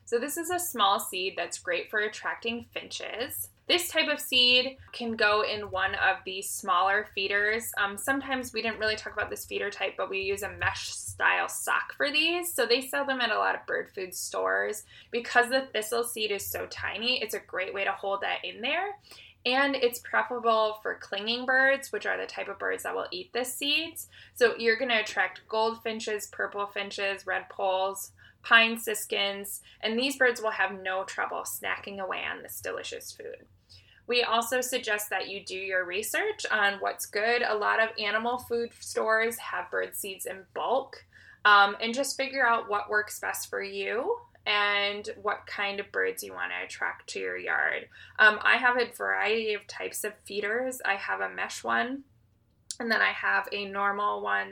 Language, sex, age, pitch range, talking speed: English, female, 20-39, 200-265 Hz, 195 wpm